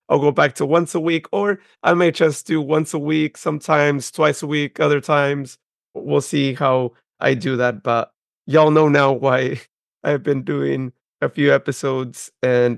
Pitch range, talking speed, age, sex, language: 135-165 Hz, 185 wpm, 30-49, male, English